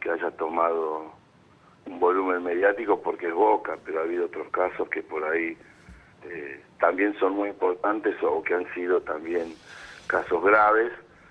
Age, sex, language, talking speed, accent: 60-79, male, Spanish, 155 wpm, Argentinian